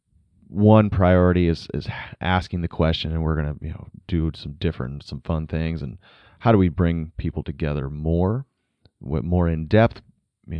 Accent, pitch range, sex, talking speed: American, 75-90 Hz, male, 180 wpm